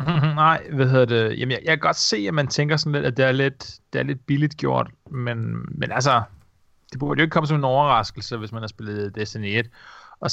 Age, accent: 30-49, native